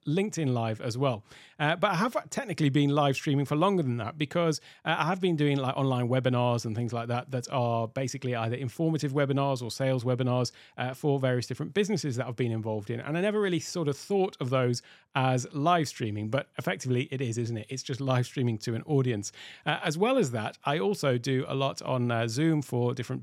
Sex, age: male, 40-59